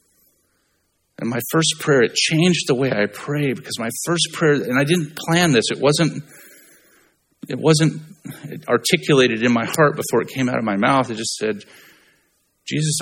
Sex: male